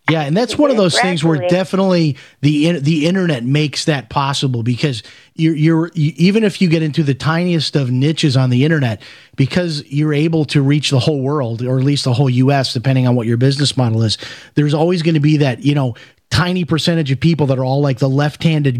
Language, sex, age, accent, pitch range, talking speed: English, male, 30-49, American, 135-165 Hz, 220 wpm